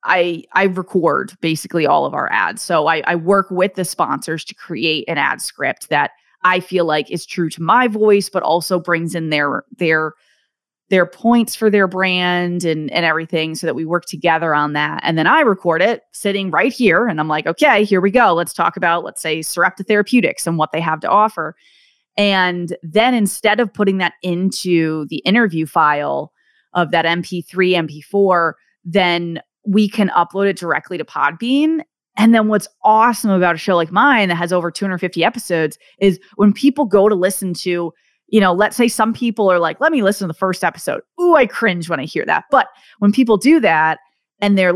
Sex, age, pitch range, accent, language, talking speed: female, 20-39, 170-210 Hz, American, English, 200 wpm